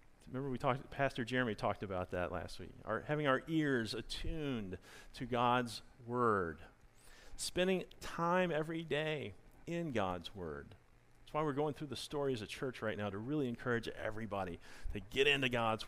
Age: 40-59